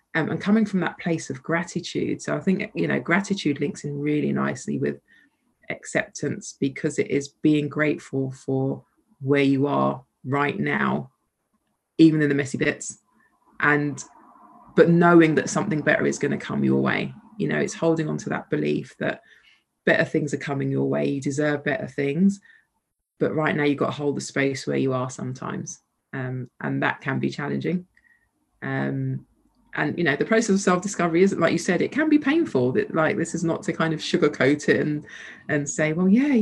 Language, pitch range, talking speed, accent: English, 140-185 Hz, 195 wpm, British